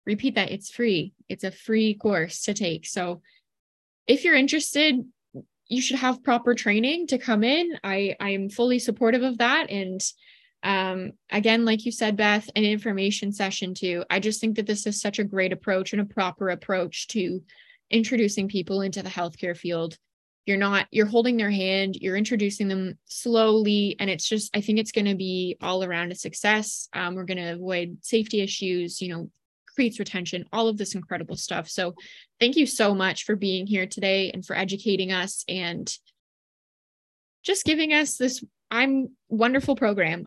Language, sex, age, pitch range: English, female, 20-39, 190-235 Hz